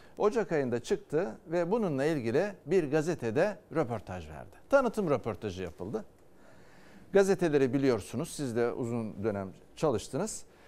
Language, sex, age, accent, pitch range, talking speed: Turkish, male, 60-79, native, 120-190 Hz, 110 wpm